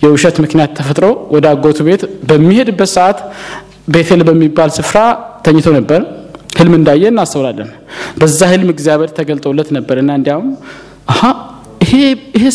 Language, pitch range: Amharic, 155-210 Hz